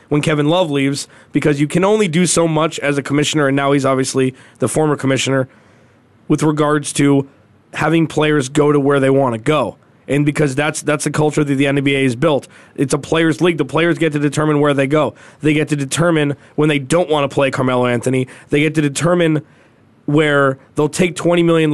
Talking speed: 215 wpm